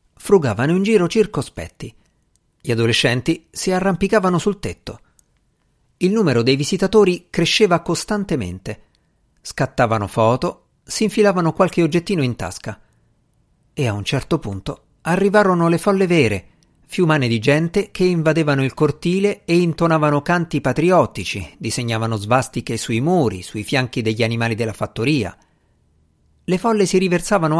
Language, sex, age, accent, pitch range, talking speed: Italian, male, 50-69, native, 115-175 Hz, 125 wpm